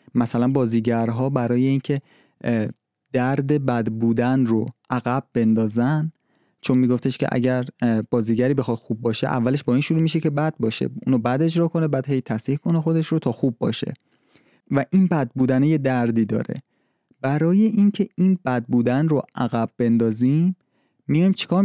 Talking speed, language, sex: 155 wpm, Persian, male